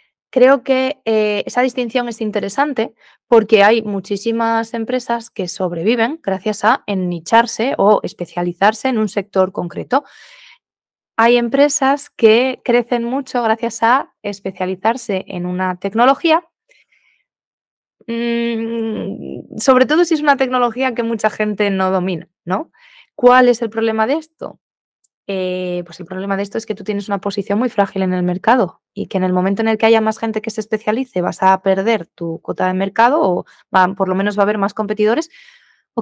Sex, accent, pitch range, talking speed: female, Spanish, 195-240 Hz, 165 wpm